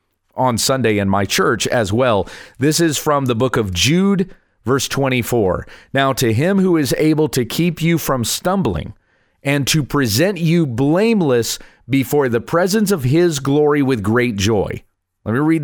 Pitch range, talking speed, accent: 110-160 Hz, 170 wpm, American